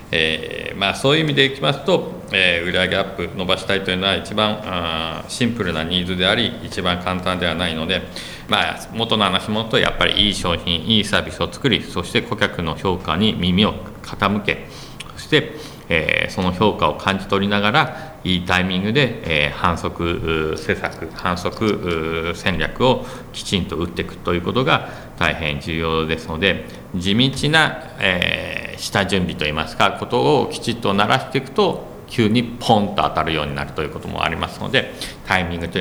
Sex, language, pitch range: male, Japanese, 85-110 Hz